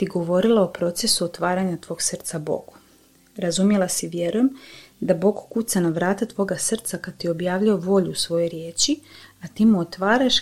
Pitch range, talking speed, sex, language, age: 165-215 Hz, 165 wpm, female, Croatian, 30-49